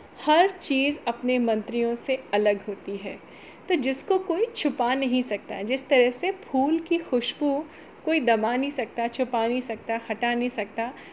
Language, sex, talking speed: Hindi, female, 160 wpm